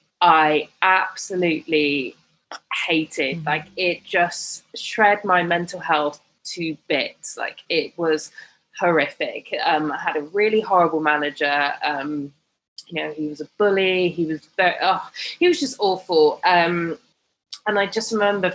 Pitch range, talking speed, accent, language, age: 165-205 Hz, 140 wpm, British, English, 20-39